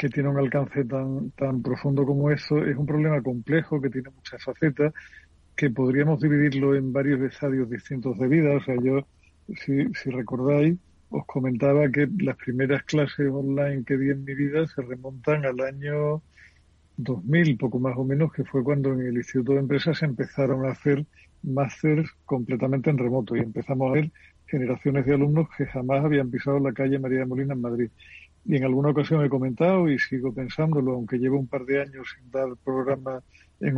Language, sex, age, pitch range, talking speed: Spanish, male, 50-69, 130-145 Hz, 185 wpm